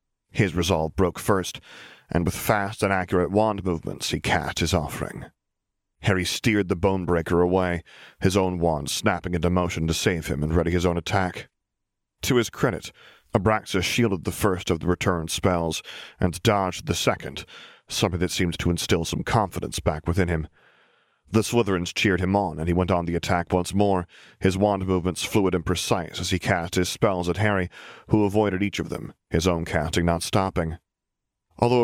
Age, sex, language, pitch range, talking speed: 40-59, male, English, 90-105 Hz, 180 wpm